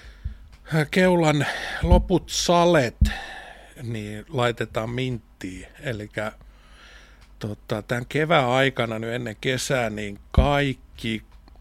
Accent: native